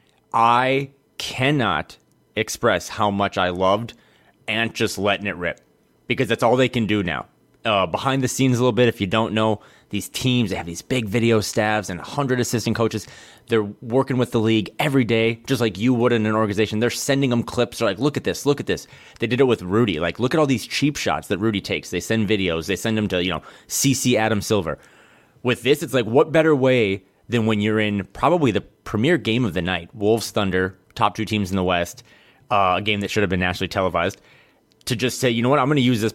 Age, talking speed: 30-49, 235 wpm